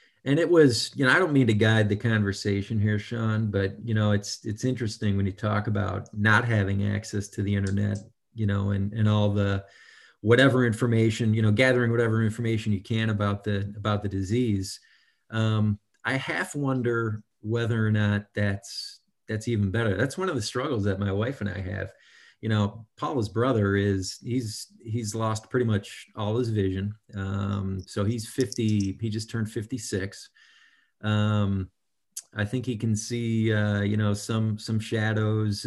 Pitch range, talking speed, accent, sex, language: 105-115 Hz, 175 wpm, American, male, English